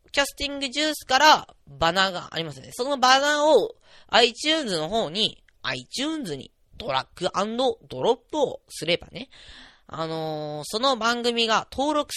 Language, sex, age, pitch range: Japanese, female, 20-39, 160-260 Hz